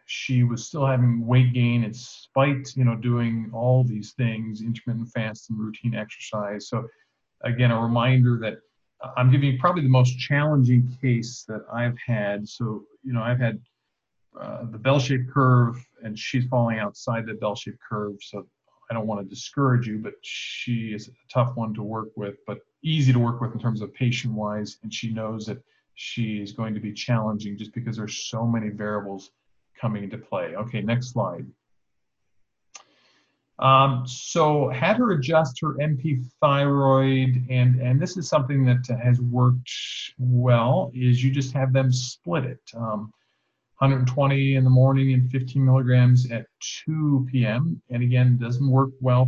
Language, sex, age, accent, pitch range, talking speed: English, male, 50-69, American, 110-130 Hz, 170 wpm